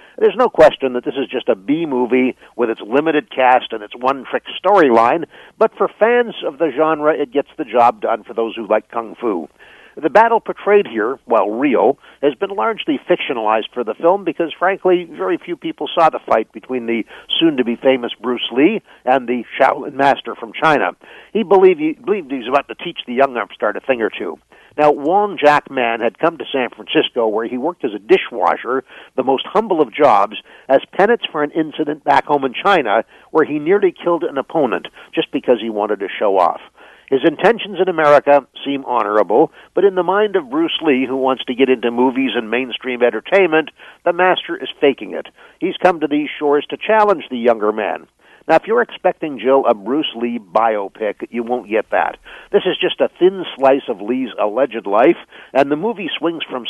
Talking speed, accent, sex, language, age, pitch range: 200 wpm, American, male, English, 60-79, 125-185 Hz